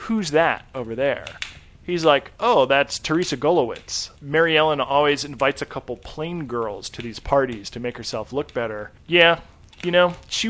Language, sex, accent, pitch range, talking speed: English, male, American, 120-150 Hz, 170 wpm